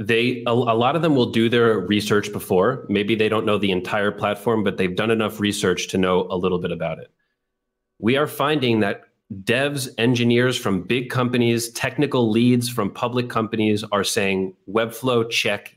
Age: 30-49